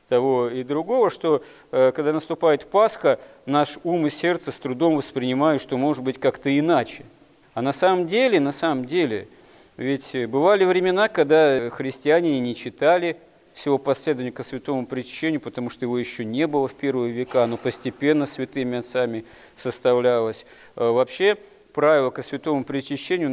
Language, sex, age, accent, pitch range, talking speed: Russian, male, 40-59, native, 125-165 Hz, 145 wpm